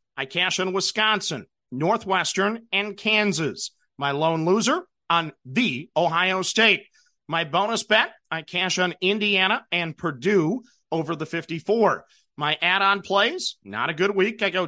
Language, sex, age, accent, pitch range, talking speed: English, male, 40-59, American, 170-205 Hz, 145 wpm